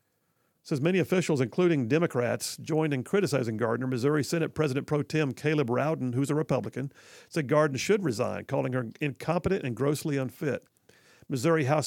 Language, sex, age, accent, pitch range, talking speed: English, male, 50-69, American, 130-160 Hz, 155 wpm